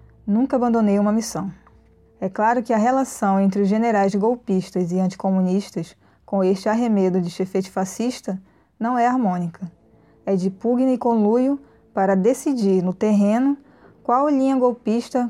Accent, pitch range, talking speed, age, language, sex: Brazilian, 195-240 Hz, 140 wpm, 20-39, Portuguese, female